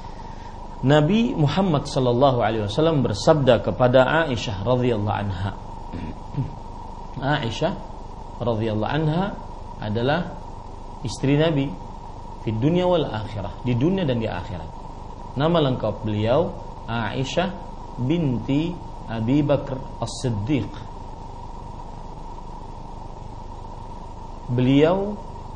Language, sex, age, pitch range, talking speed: Indonesian, male, 40-59, 105-140 Hz, 80 wpm